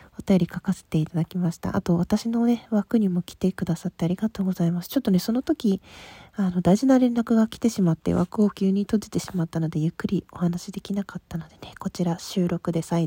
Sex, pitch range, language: female, 170-210 Hz, Japanese